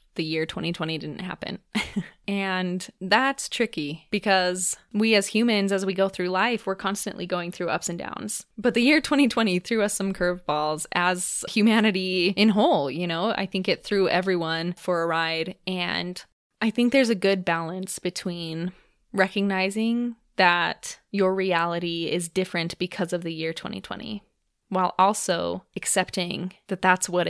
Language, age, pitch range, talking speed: English, 20-39, 170-200 Hz, 155 wpm